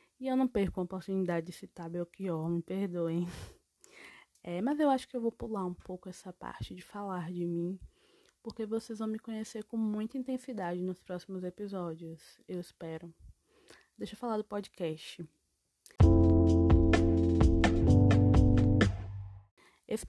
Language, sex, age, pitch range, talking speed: Portuguese, female, 20-39, 180-225 Hz, 135 wpm